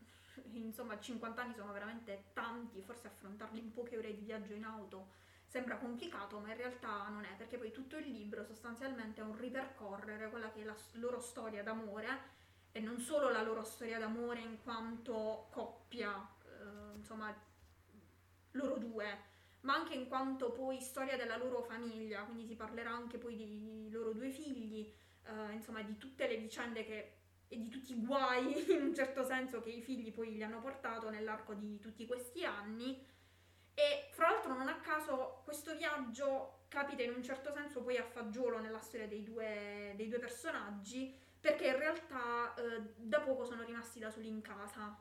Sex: female